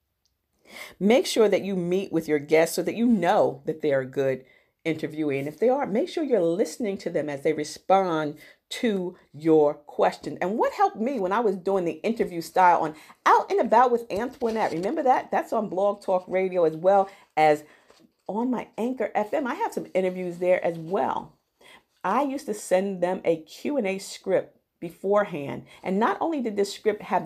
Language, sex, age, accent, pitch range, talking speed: English, female, 50-69, American, 160-220 Hz, 195 wpm